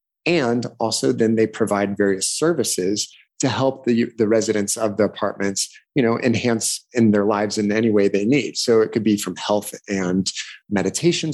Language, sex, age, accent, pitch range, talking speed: English, male, 30-49, American, 105-135 Hz, 180 wpm